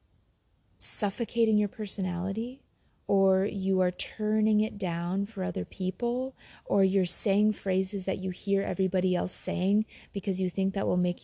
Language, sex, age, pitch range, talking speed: English, female, 30-49, 190-245 Hz, 150 wpm